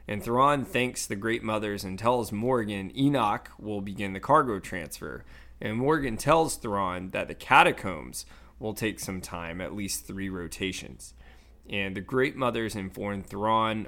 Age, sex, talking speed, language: 20-39, male, 155 wpm, English